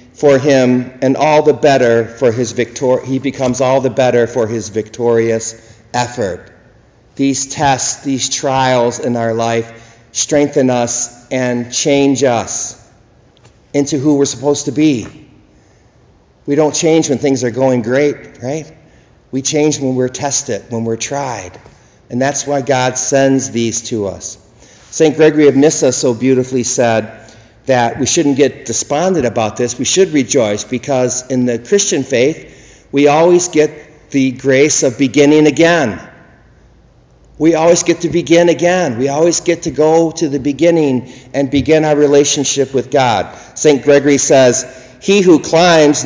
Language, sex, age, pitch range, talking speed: English, male, 50-69, 120-150 Hz, 150 wpm